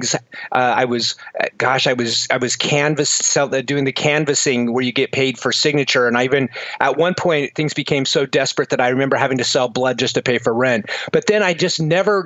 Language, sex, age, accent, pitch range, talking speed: English, male, 40-59, American, 150-180 Hz, 220 wpm